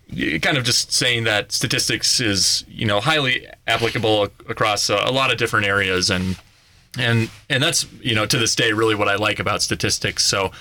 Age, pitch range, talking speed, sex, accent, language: 30-49, 100-120 Hz, 190 wpm, male, American, English